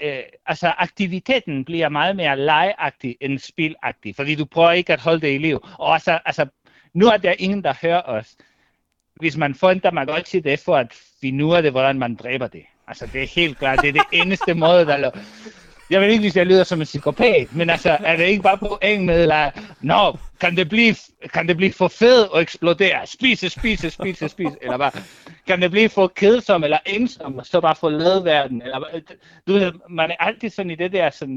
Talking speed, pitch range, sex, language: 205 wpm, 140-190 Hz, male, Danish